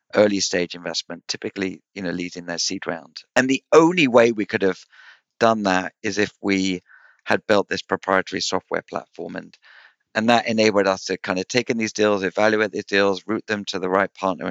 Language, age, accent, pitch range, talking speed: English, 50-69, British, 95-125 Hz, 205 wpm